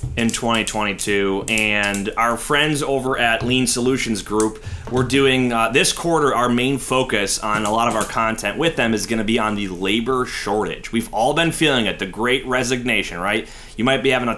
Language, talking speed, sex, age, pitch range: English, 200 wpm, male, 30-49, 110-130 Hz